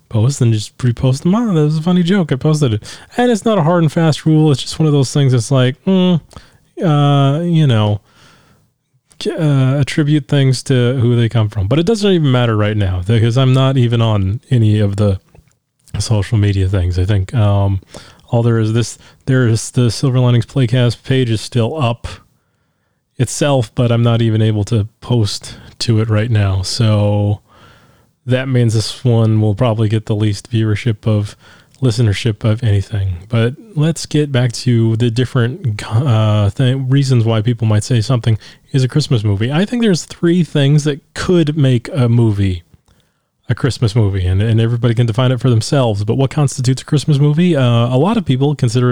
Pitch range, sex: 110-140 Hz, male